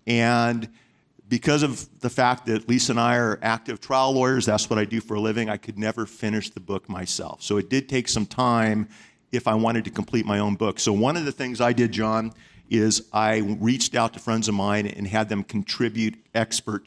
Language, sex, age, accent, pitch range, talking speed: English, male, 50-69, American, 105-125 Hz, 220 wpm